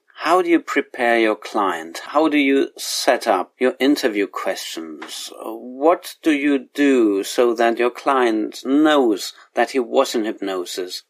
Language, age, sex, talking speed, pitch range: English, 40-59, male, 150 wpm, 115-145 Hz